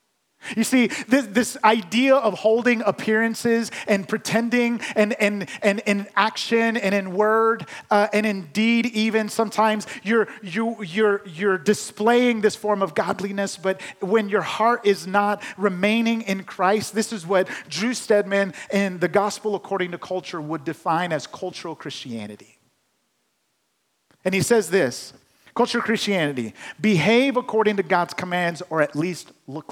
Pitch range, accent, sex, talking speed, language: 180-220 Hz, American, male, 150 wpm, English